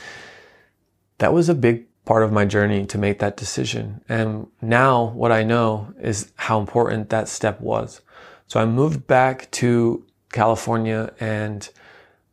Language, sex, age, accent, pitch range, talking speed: English, male, 20-39, American, 110-125 Hz, 145 wpm